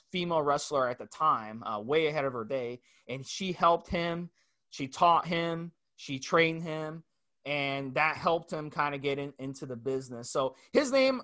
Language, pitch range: English, 145-180 Hz